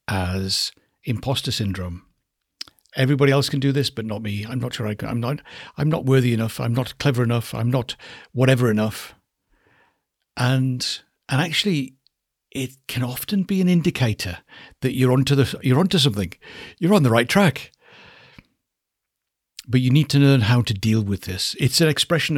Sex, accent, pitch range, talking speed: male, British, 110-140 Hz, 170 wpm